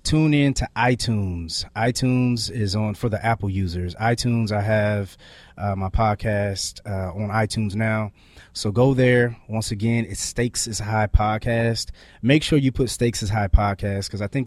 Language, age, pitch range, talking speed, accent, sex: English, 20-39, 100-125 Hz, 175 wpm, American, male